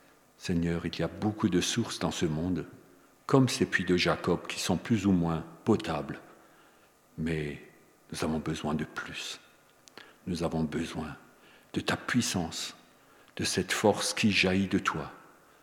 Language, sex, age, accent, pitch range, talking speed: French, male, 50-69, French, 80-95 Hz, 155 wpm